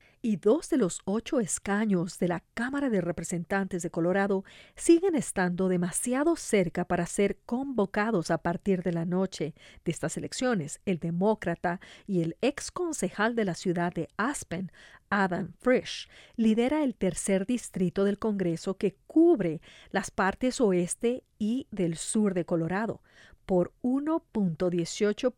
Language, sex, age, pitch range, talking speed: English, female, 40-59, 175-215 Hz, 140 wpm